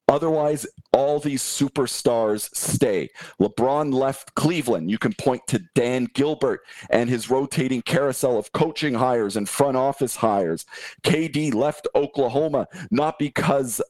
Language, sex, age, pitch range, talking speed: English, male, 40-59, 130-150 Hz, 130 wpm